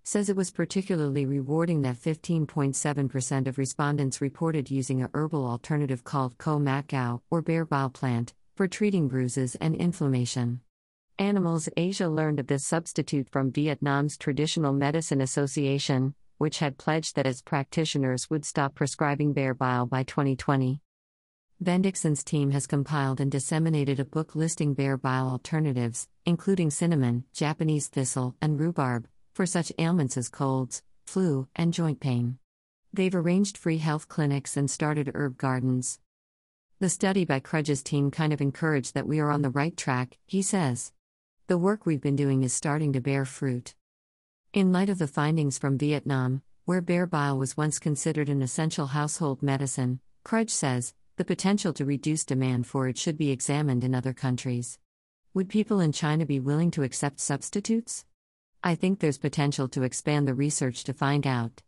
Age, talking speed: 50-69, 160 wpm